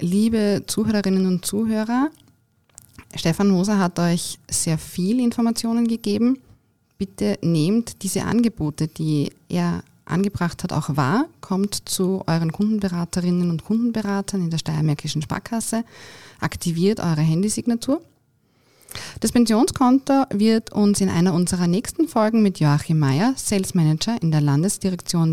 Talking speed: 125 wpm